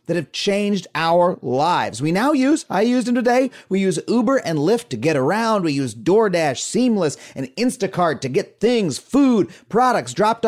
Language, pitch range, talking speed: English, 165-245 Hz, 185 wpm